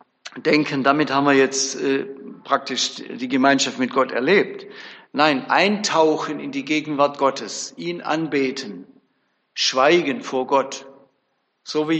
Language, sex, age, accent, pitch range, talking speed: German, male, 60-79, German, 135-175 Hz, 125 wpm